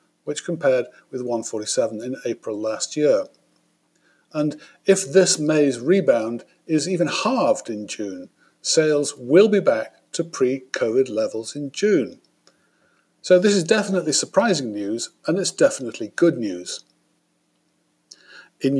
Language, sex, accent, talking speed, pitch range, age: English, male, British, 125 wpm, 125-170 Hz, 50-69